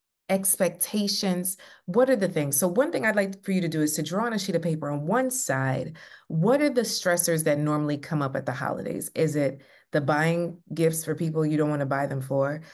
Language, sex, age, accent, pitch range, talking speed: English, female, 30-49, American, 145-175 Hz, 235 wpm